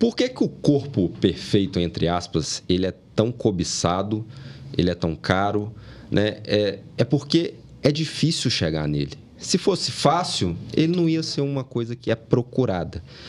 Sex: male